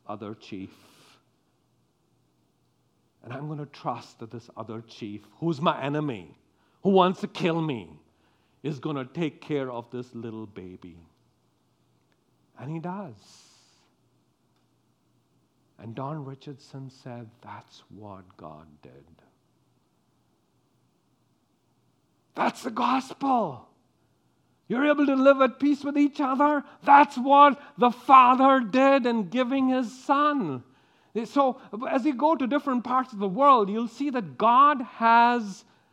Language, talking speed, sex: English, 125 wpm, male